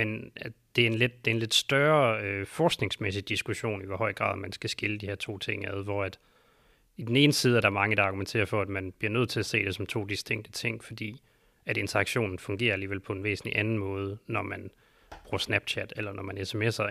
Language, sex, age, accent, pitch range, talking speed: Danish, male, 30-49, native, 100-115 Hz, 235 wpm